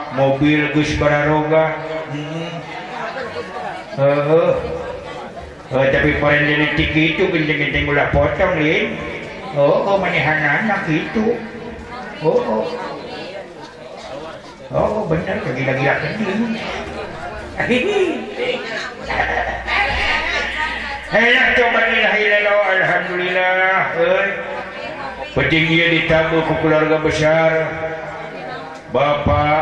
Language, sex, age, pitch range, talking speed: Indonesian, male, 60-79, 140-160 Hz, 85 wpm